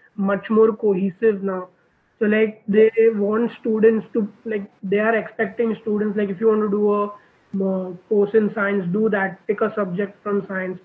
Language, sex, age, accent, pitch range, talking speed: English, male, 20-39, Indian, 190-215 Hz, 185 wpm